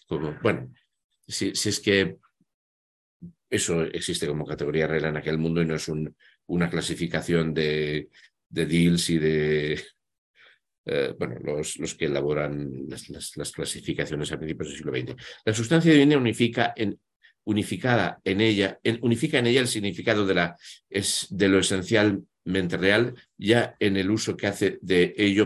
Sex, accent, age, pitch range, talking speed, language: male, Spanish, 60-79, 85-115 Hz, 165 wpm, Spanish